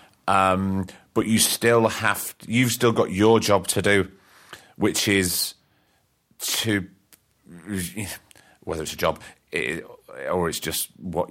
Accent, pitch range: British, 90-105 Hz